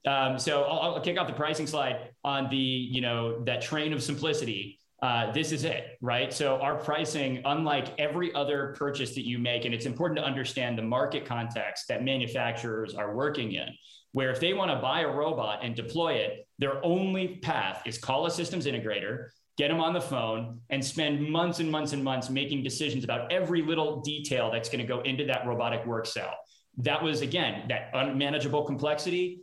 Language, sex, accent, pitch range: English, male, American, 120-150 Hz